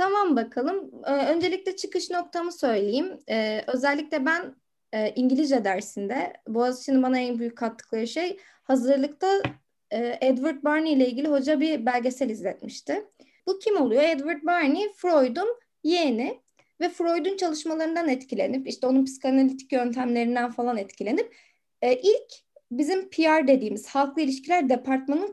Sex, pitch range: female, 255-320 Hz